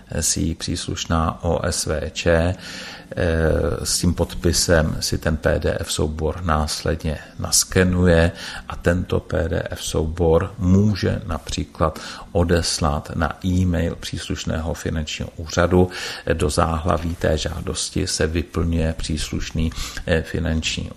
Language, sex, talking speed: Czech, male, 90 wpm